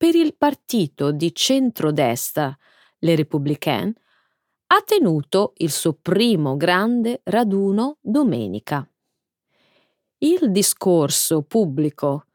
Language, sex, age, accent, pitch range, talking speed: Italian, female, 30-49, native, 160-265 Hz, 85 wpm